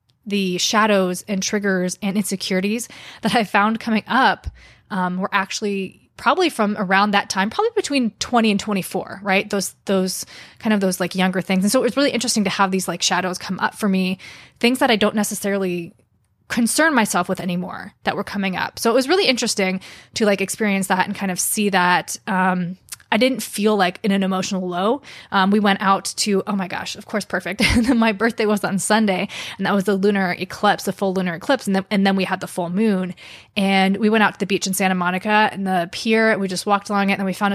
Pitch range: 185-210 Hz